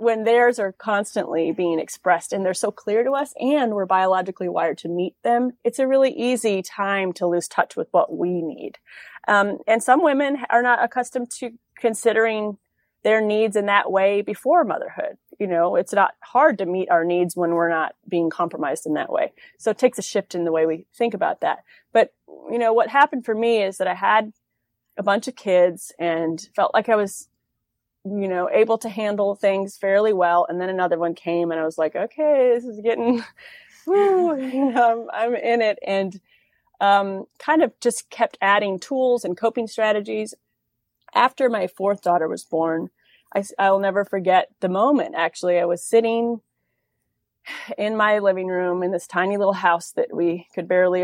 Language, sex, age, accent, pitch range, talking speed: English, female, 30-49, American, 180-235 Hz, 190 wpm